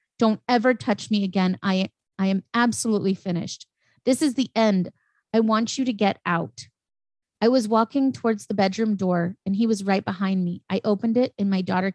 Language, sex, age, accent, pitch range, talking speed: English, female, 30-49, American, 185-225 Hz, 195 wpm